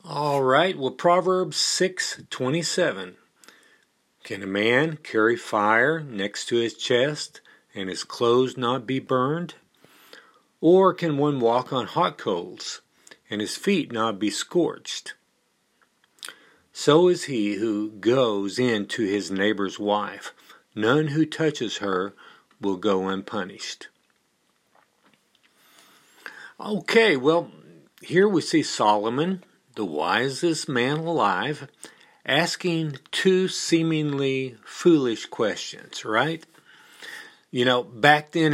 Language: English